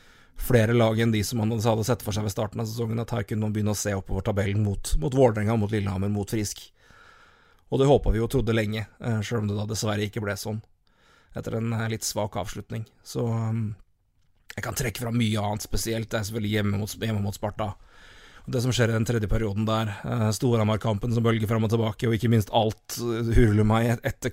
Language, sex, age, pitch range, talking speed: English, male, 30-49, 105-115 Hz, 220 wpm